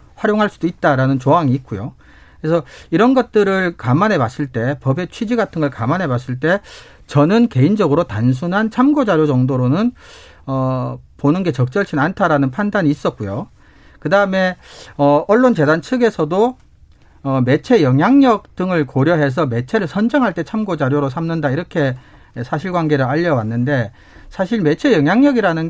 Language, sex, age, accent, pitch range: Korean, male, 40-59, native, 135-190 Hz